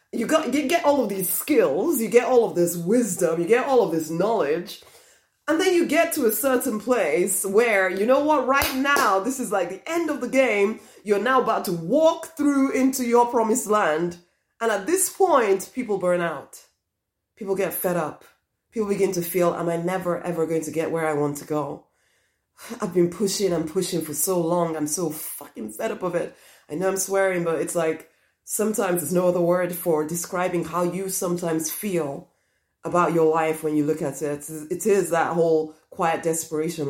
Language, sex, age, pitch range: English, female, 30-49, 160-220 Hz